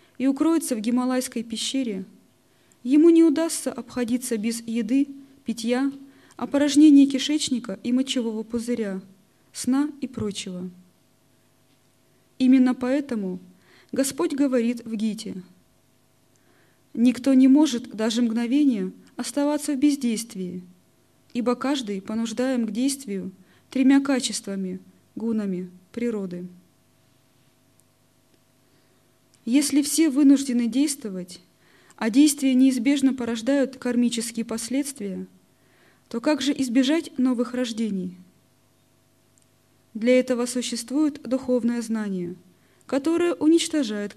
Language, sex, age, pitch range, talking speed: Russian, female, 20-39, 190-270 Hz, 90 wpm